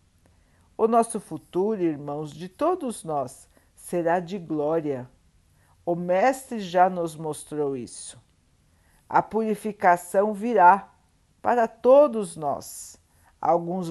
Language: Portuguese